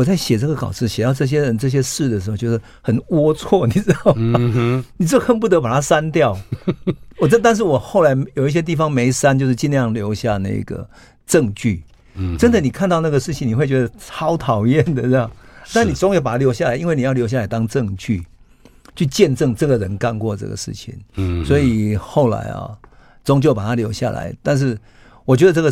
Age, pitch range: 50-69, 105-135 Hz